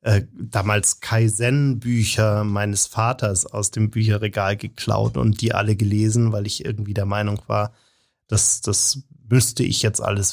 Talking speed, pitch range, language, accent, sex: 145 wpm, 110-130 Hz, German, German, male